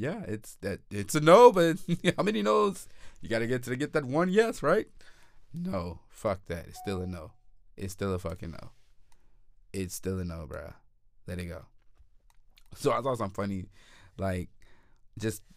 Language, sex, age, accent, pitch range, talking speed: English, male, 20-39, American, 90-115 Hz, 175 wpm